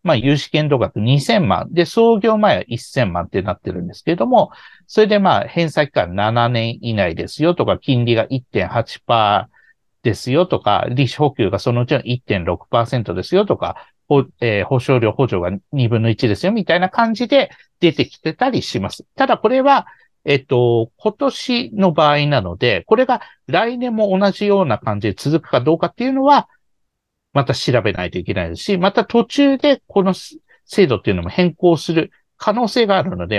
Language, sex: Japanese, male